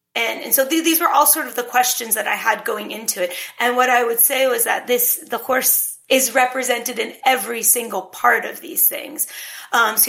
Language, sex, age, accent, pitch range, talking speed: German, female, 30-49, American, 215-255 Hz, 225 wpm